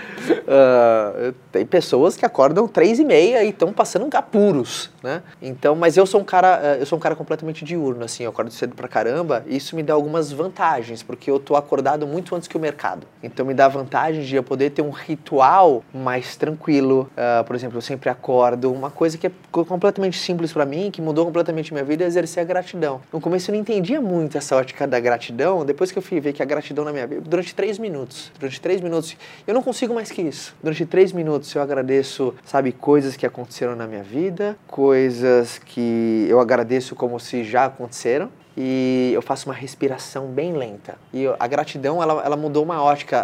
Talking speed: 210 wpm